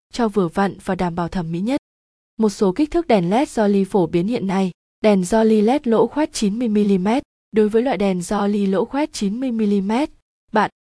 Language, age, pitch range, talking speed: Vietnamese, 20-39, 195-235 Hz, 195 wpm